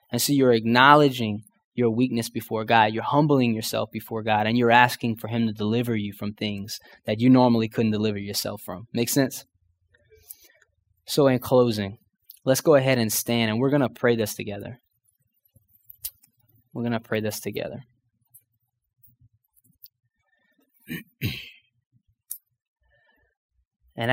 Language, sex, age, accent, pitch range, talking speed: English, male, 20-39, American, 115-135 Hz, 135 wpm